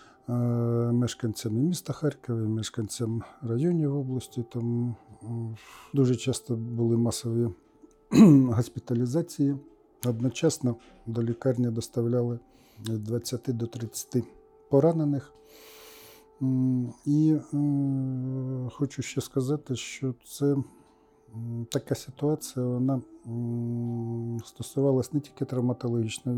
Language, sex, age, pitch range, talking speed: Ukrainian, male, 50-69, 120-140 Hz, 75 wpm